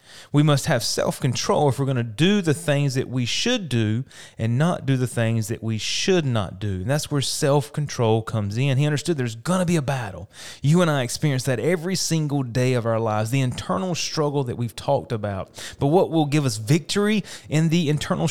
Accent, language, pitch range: American, English, 120-160 Hz